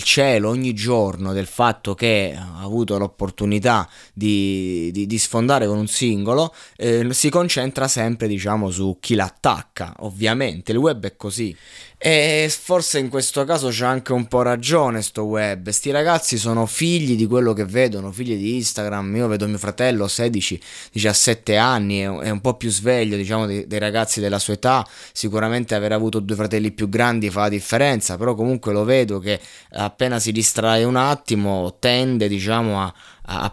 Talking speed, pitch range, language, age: 170 wpm, 100-120 Hz, Italian, 20-39